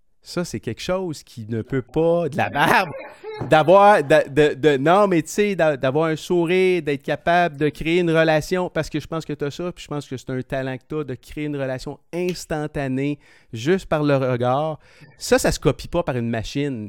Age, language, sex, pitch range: 30-49, French, male, 125-160 Hz